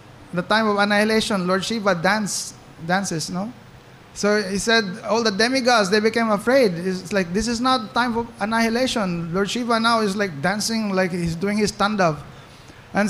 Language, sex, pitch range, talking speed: English, male, 185-235 Hz, 175 wpm